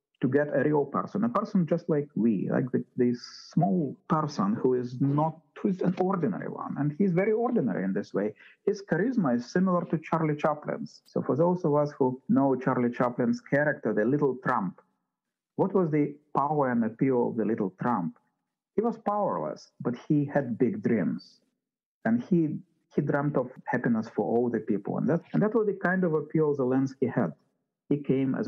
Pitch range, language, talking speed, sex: 135-200 Hz, English, 195 wpm, male